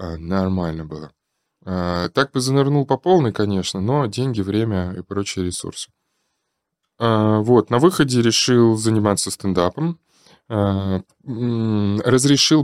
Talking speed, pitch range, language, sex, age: 100 wpm, 100-130 Hz, Russian, male, 20-39